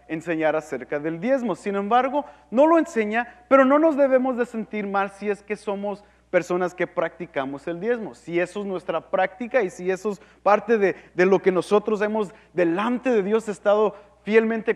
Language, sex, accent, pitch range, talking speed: English, male, Mexican, 175-245 Hz, 185 wpm